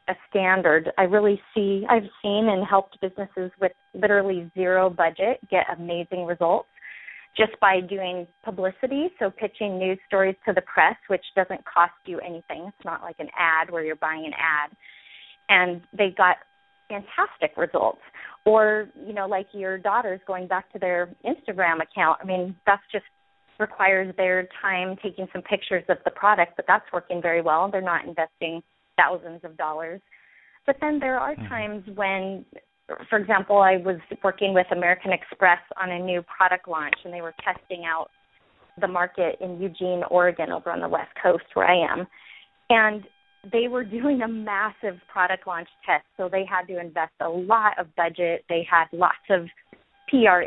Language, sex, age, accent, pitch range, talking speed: English, female, 30-49, American, 175-205 Hz, 170 wpm